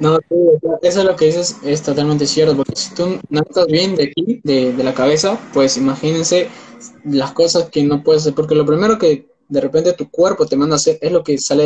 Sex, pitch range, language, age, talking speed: male, 140-175 Hz, Spanish, 20-39, 225 wpm